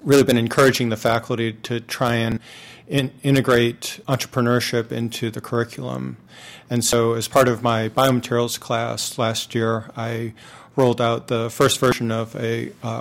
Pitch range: 115-130 Hz